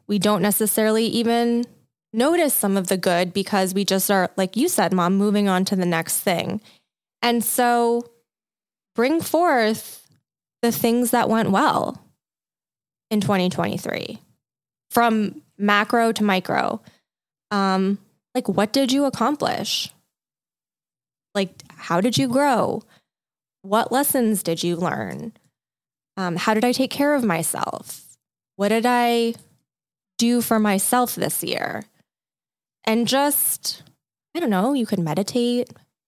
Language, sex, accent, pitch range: English, female, American, 190-235 Hz